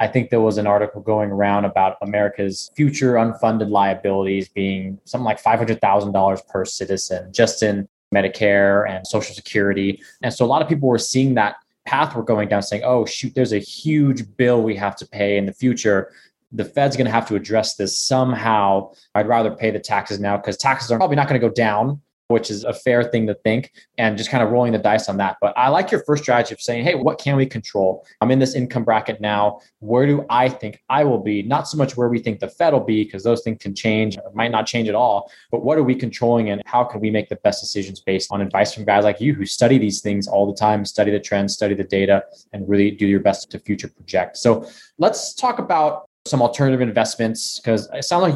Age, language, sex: 20-39, English, male